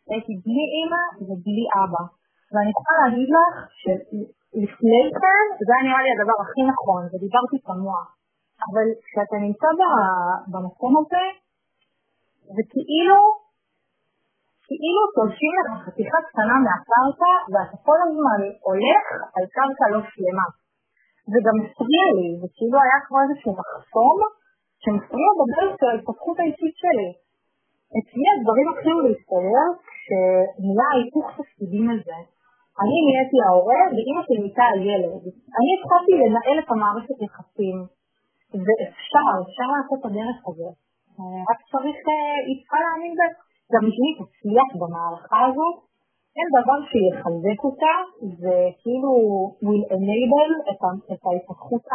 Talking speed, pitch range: 120 wpm, 200-300 Hz